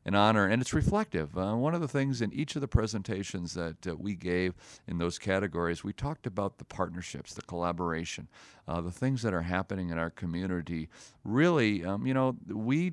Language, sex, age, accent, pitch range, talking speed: English, male, 40-59, American, 90-120 Hz, 200 wpm